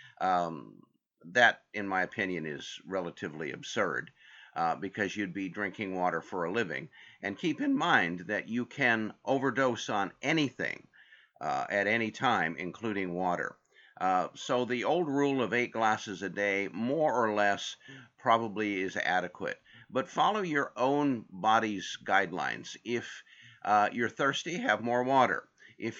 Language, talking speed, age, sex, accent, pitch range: English, 145 wpm, 50-69, male, American, 95-125 Hz